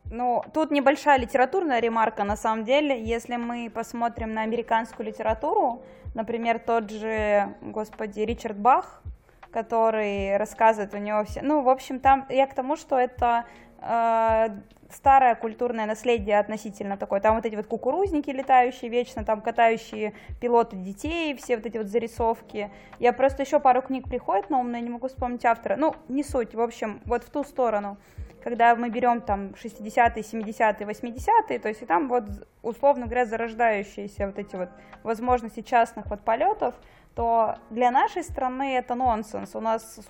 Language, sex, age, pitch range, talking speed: Russian, female, 20-39, 215-245 Hz, 160 wpm